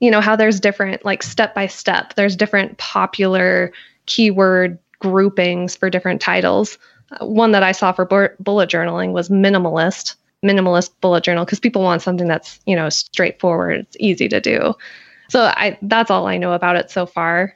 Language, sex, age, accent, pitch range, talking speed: English, female, 20-39, American, 175-200 Hz, 175 wpm